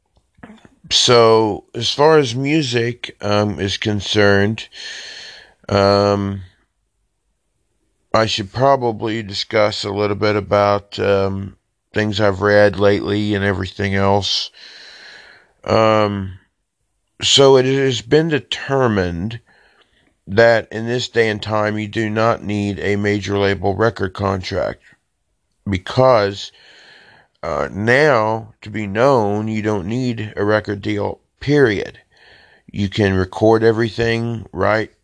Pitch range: 100-115 Hz